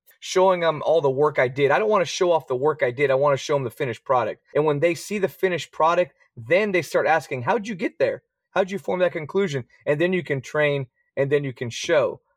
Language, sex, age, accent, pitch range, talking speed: English, male, 30-49, American, 135-175 Hz, 275 wpm